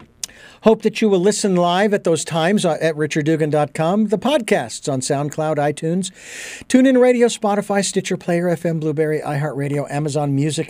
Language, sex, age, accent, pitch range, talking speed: English, male, 50-69, American, 160-215 Hz, 145 wpm